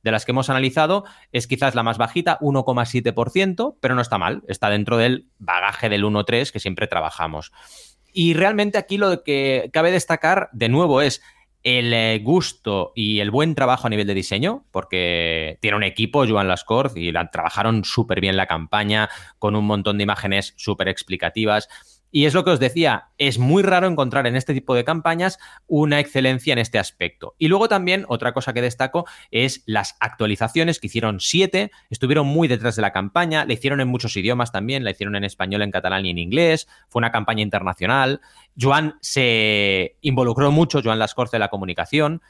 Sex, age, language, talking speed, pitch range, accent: male, 30-49, Spanish, 185 wpm, 105-145 Hz, Spanish